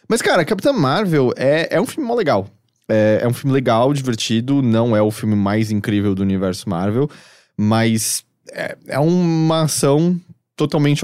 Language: Portuguese